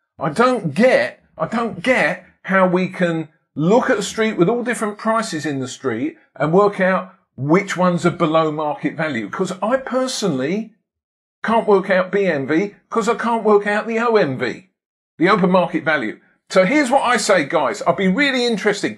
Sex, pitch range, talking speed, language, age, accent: male, 175-225 Hz, 180 wpm, English, 50-69, British